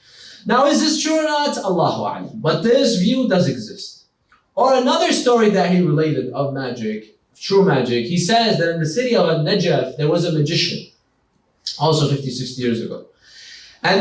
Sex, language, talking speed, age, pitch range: male, English, 165 wpm, 30-49, 155-215 Hz